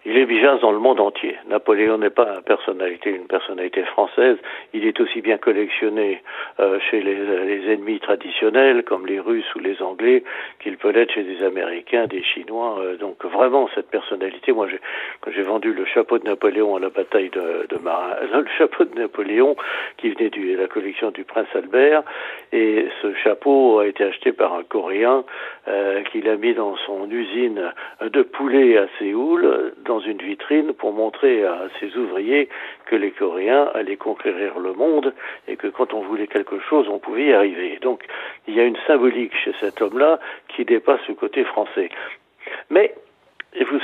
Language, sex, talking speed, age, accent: French, male, 185 wpm, 60-79, French